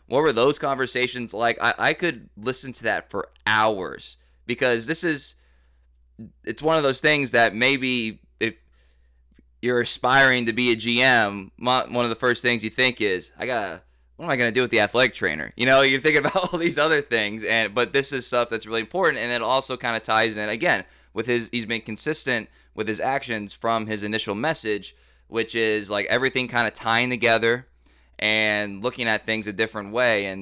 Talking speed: 205 wpm